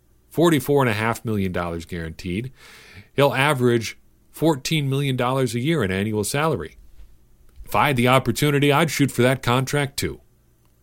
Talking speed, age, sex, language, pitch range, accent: 120 wpm, 40-59, male, English, 85-120 Hz, American